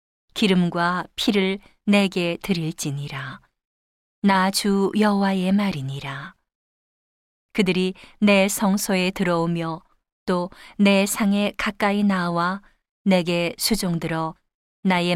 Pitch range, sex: 170-200 Hz, female